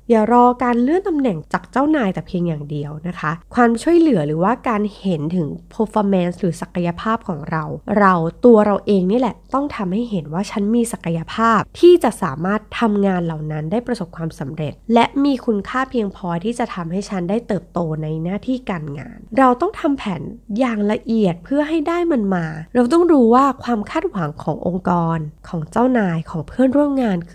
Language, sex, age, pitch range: Thai, female, 20-39, 170-235 Hz